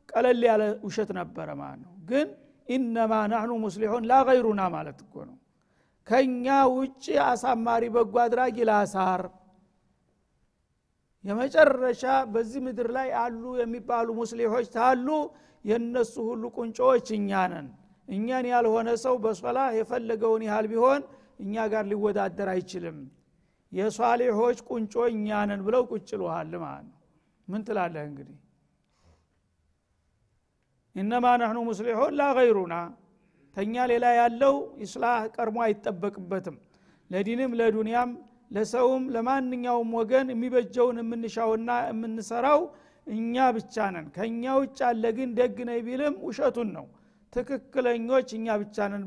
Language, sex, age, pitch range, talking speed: Amharic, male, 50-69, 205-245 Hz, 90 wpm